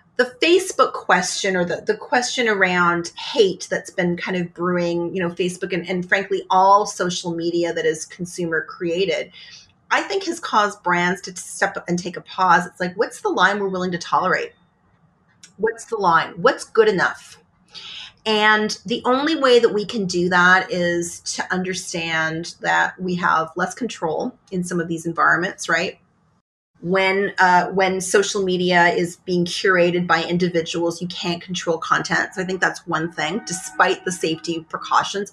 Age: 30-49